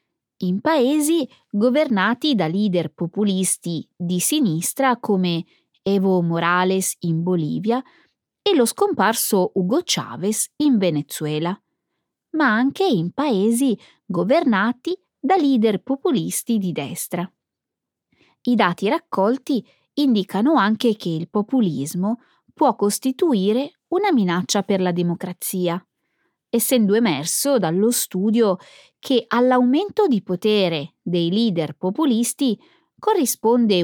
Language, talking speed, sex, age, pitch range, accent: Italian, 100 wpm, female, 20-39, 180-275 Hz, native